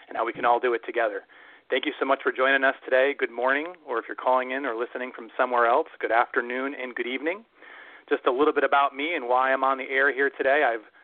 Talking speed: 255 wpm